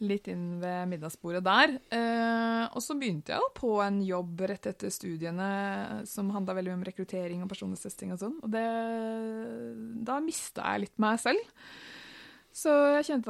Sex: female